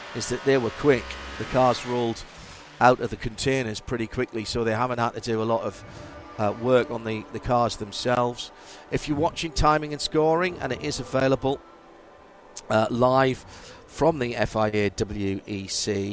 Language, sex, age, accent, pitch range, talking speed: English, male, 50-69, British, 110-135 Hz, 165 wpm